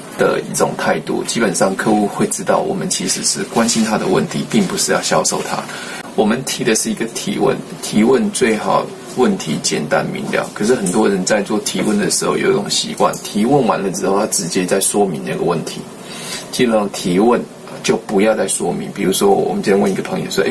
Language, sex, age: Chinese, male, 20-39